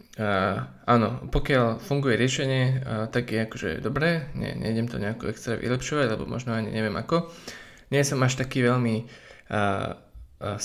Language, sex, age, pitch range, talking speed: Slovak, male, 20-39, 115-130 Hz, 145 wpm